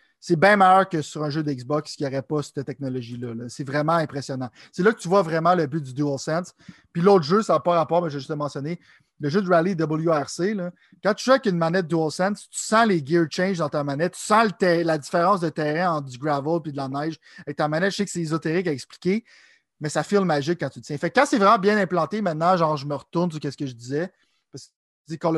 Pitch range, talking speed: 145-180 Hz, 265 wpm